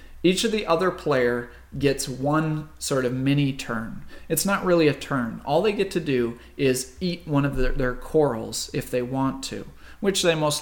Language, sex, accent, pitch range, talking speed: English, male, American, 120-155 Hz, 190 wpm